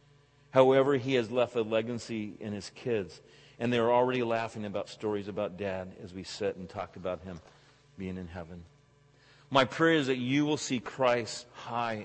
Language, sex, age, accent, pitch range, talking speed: English, male, 40-59, American, 110-145 Hz, 180 wpm